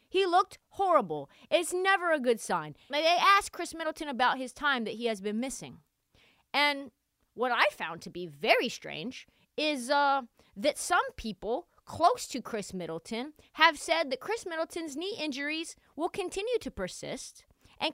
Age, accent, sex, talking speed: 30-49, American, female, 165 wpm